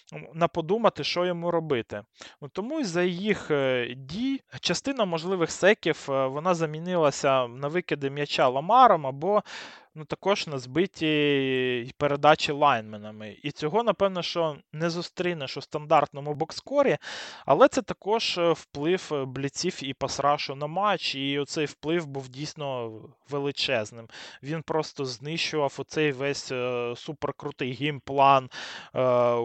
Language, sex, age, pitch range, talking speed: Ukrainian, male, 20-39, 130-160 Hz, 115 wpm